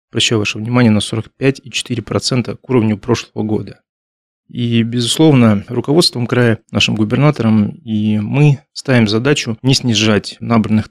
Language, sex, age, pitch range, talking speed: Russian, male, 20-39, 110-125 Hz, 120 wpm